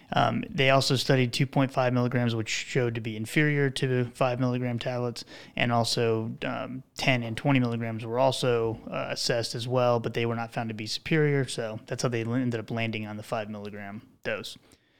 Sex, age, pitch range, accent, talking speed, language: male, 20-39, 115-135 Hz, American, 185 wpm, English